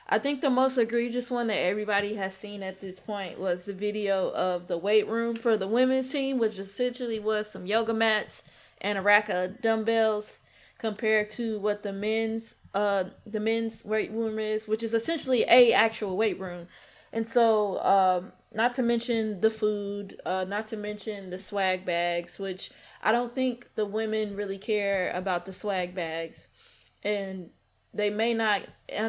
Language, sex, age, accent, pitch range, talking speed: English, female, 20-39, American, 200-250 Hz, 175 wpm